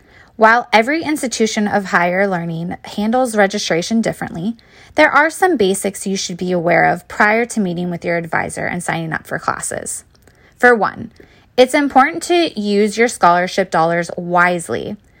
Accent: American